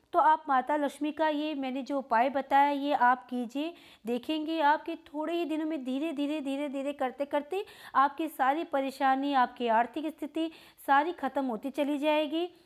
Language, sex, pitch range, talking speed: Hindi, female, 250-310 Hz, 170 wpm